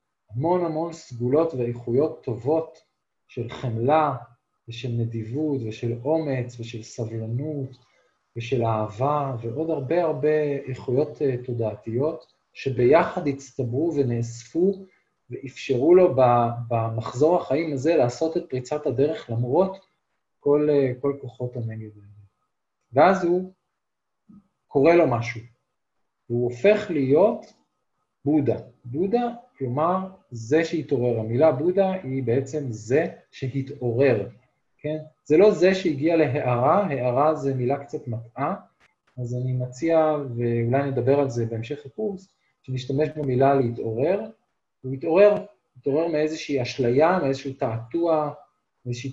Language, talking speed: Hebrew, 105 wpm